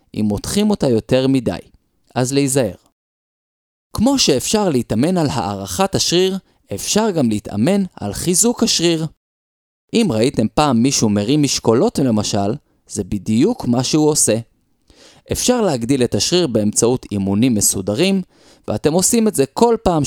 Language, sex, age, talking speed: Hebrew, male, 20-39, 130 wpm